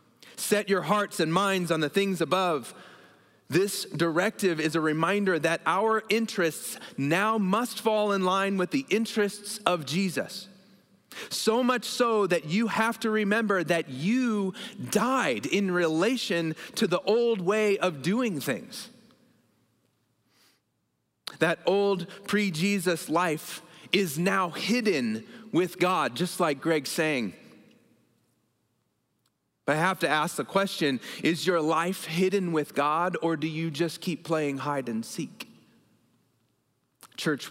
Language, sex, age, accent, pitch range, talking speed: English, male, 30-49, American, 160-200 Hz, 130 wpm